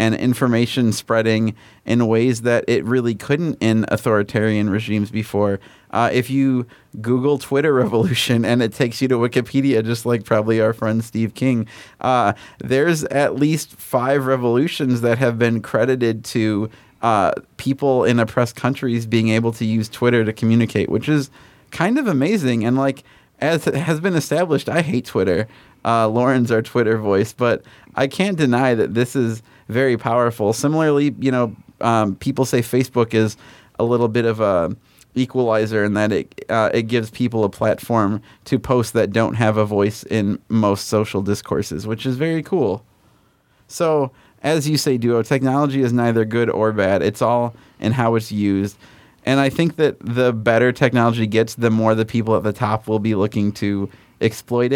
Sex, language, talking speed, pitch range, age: male, English, 175 wpm, 110-130 Hz, 30-49